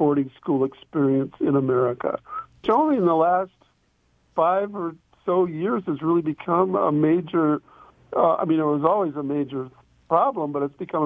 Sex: male